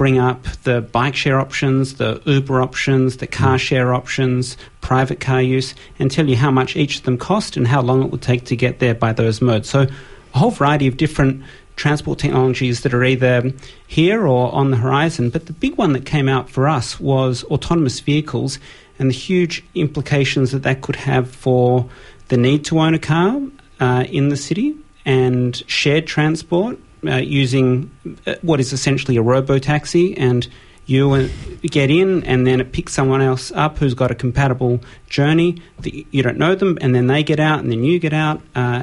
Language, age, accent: English, 40-59, Australian